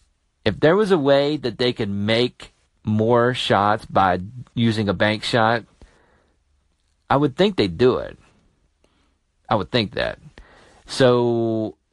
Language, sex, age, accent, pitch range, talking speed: English, male, 40-59, American, 95-155 Hz, 135 wpm